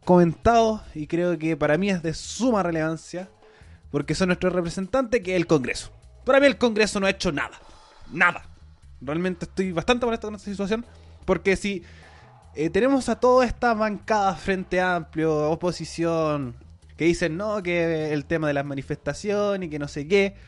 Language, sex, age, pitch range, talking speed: Spanish, male, 20-39, 145-210 Hz, 175 wpm